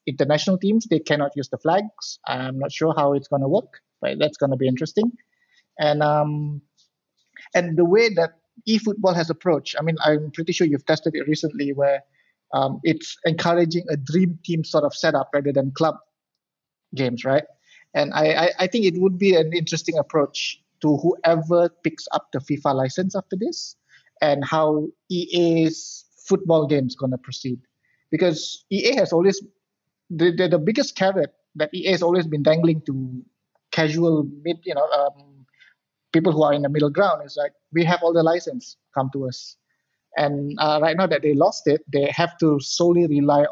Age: 30-49